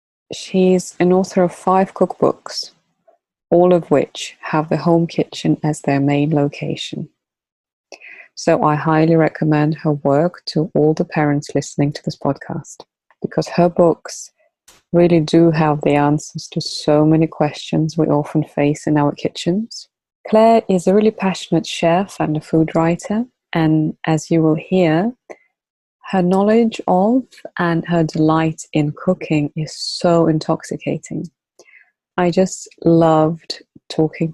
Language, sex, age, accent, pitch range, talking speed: English, female, 20-39, British, 155-185 Hz, 140 wpm